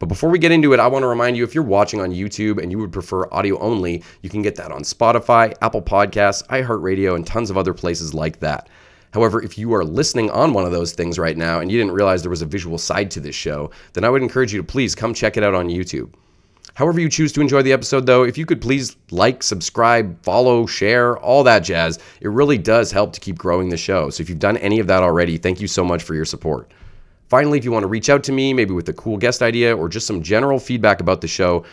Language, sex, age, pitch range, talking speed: English, male, 30-49, 90-120 Hz, 265 wpm